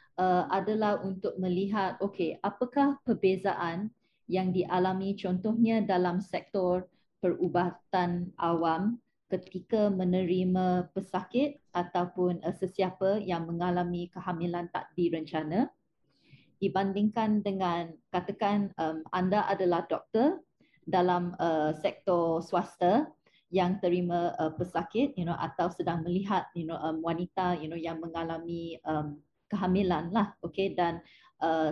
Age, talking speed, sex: 20-39, 110 wpm, female